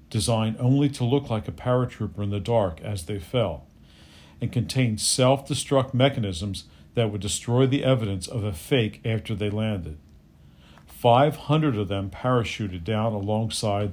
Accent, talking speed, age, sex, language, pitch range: American, 145 wpm, 50-69, male, English, 90-125 Hz